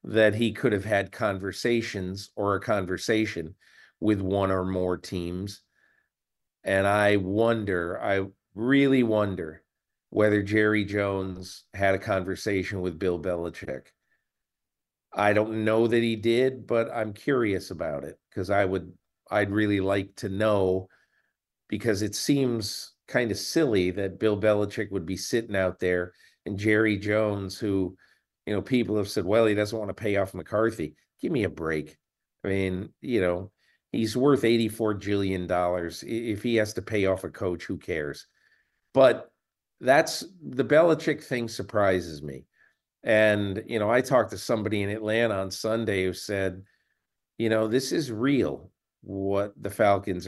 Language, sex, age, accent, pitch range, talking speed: English, male, 40-59, American, 95-110 Hz, 155 wpm